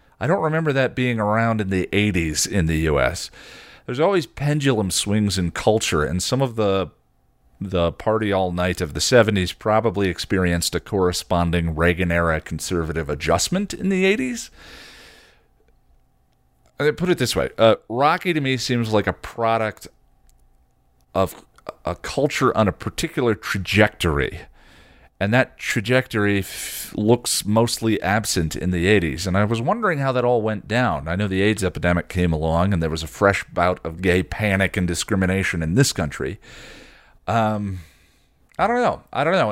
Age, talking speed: 40-59, 160 wpm